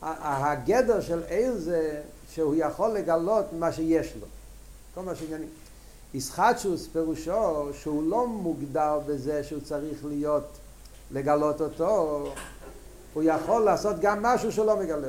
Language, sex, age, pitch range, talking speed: Hebrew, male, 60-79, 140-195 Hz, 125 wpm